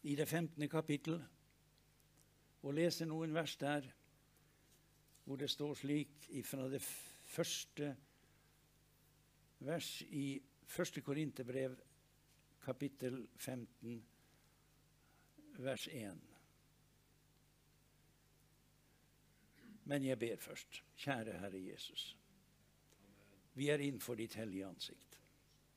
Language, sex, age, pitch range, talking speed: English, male, 60-79, 115-145 Hz, 90 wpm